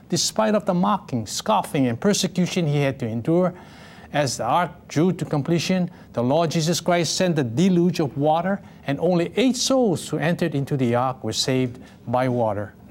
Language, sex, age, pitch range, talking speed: English, male, 60-79, 135-180 Hz, 180 wpm